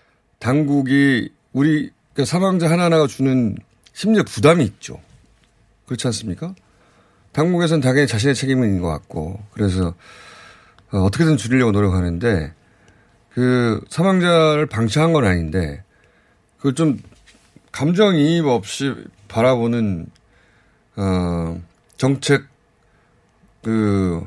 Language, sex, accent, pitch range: Korean, male, native, 100-155 Hz